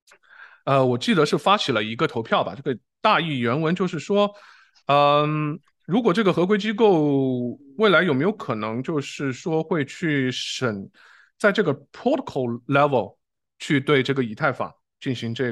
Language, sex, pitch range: Chinese, male, 120-160 Hz